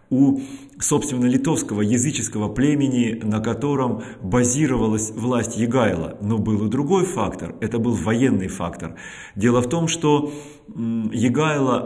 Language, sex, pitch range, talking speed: Russian, male, 110-140 Hz, 120 wpm